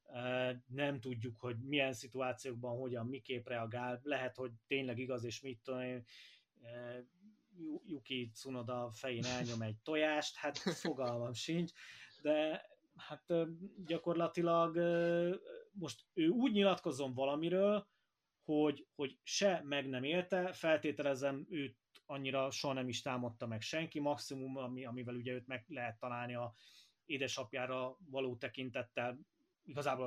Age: 30-49